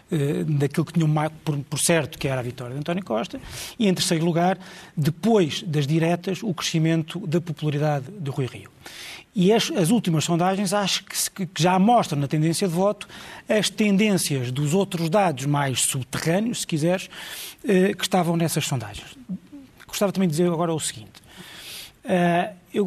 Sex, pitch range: male, 150-185 Hz